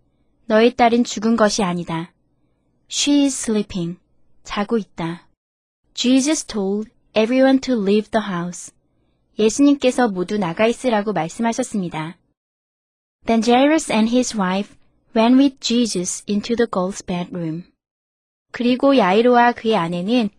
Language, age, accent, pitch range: Korean, 20-39, native, 190-245 Hz